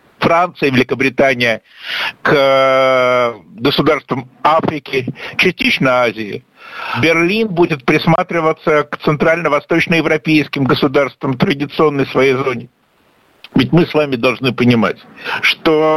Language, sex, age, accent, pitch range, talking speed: Russian, male, 60-79, native, 140-195 Hz, 90 wpm